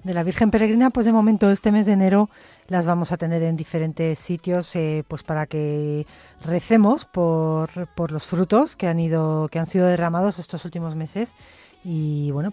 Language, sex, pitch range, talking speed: Spanish, female, 155-185 Hz, 185 wpm